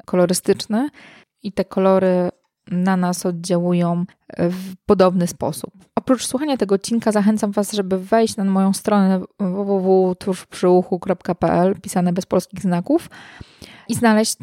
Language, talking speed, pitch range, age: Polish, 115 wpm, 175-205 Hz, 20-39